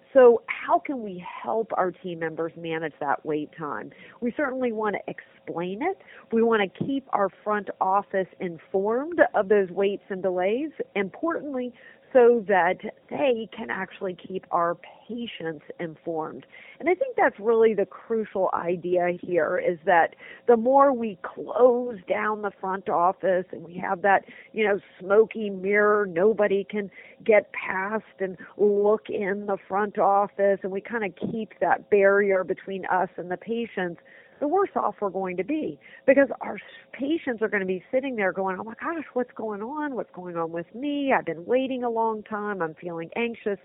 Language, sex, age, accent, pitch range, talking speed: English, female, 40-59, American, 185-235 Hz, 175 wpm